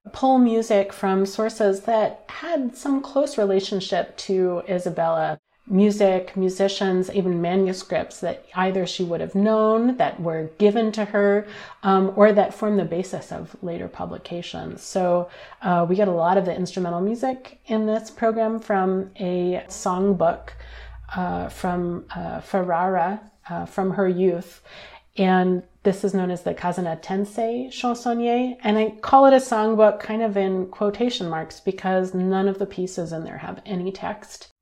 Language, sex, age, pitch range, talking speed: English, female, 30-49, 180-215 Hz, 155 wpm